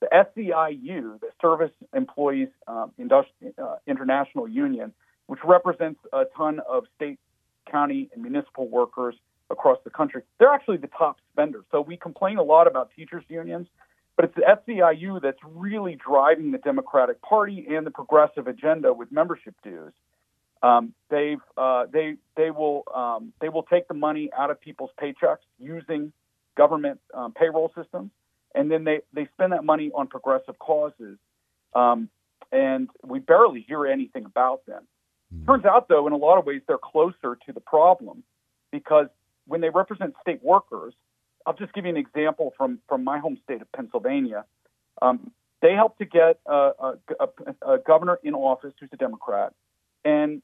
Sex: male